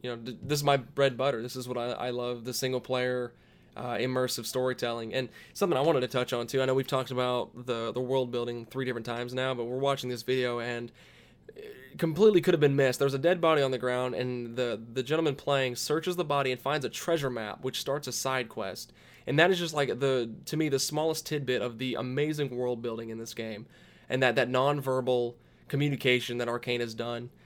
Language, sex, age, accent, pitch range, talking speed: English, male, 20-39, American, 125-140 Hz, 225 wpm